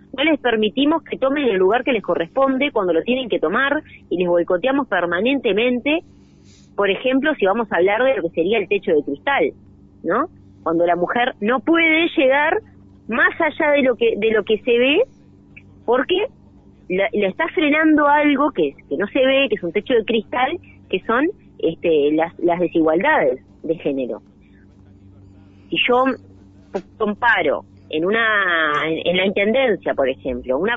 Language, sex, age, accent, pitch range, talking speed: Spanish, female, 20-39, Argentinian, 170-270 Hz, 170 wpm